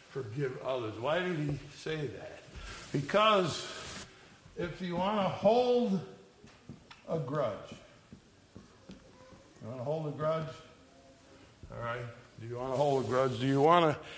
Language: English